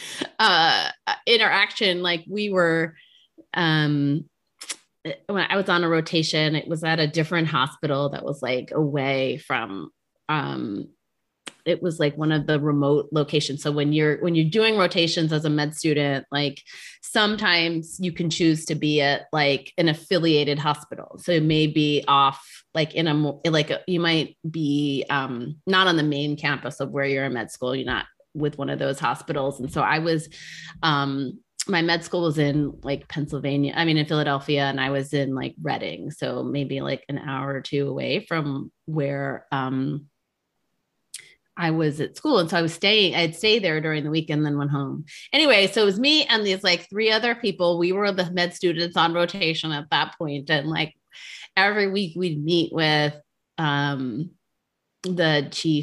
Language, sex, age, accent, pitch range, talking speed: English, female, 30-49, American, 145-175 Hz, 180 wpm